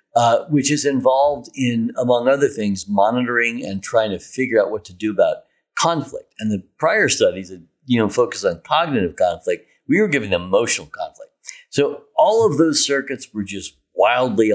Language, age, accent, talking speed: English, 50-69, American, 175 wpm